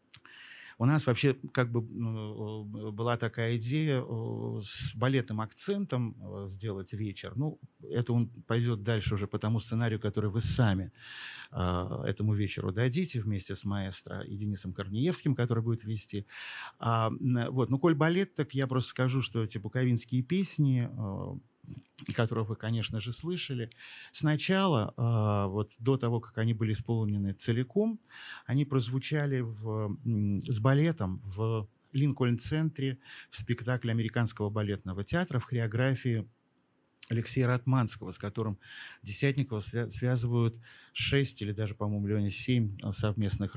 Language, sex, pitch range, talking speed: Russian, male, 105-125 Hz, 125 wpm